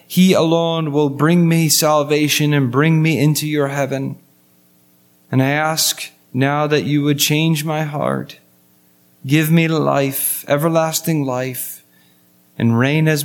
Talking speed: 135 wpm